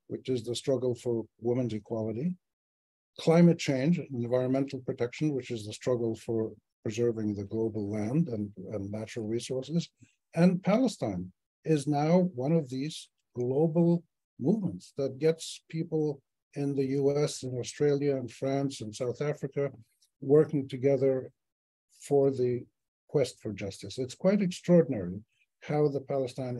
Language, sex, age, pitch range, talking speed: English, male, 60-79, 115-150 Hz, 135 wpm